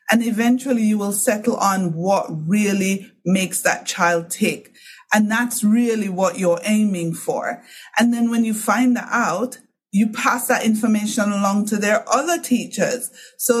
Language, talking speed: English, 160 wpm